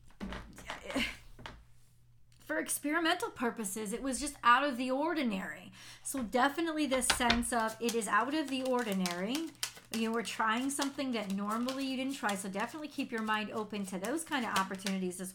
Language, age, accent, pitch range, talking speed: English, 40-59, American, 220-270 Hz, 165 wpm